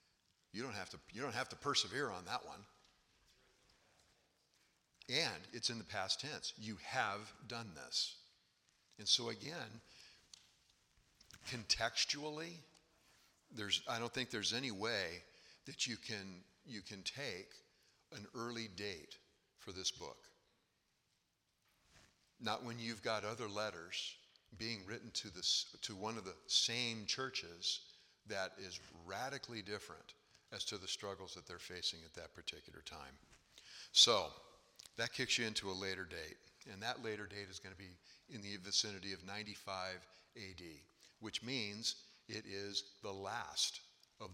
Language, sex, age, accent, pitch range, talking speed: English, male, 50-69, American, 95-115 Hz, 140 wpm